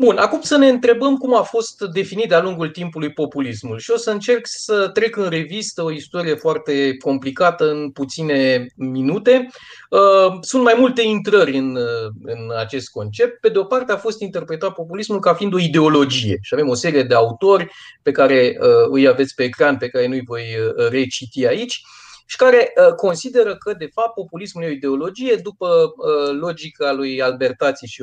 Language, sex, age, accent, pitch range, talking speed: Romanian, male, 30-49, native, 140-220 Hz, 175 wpm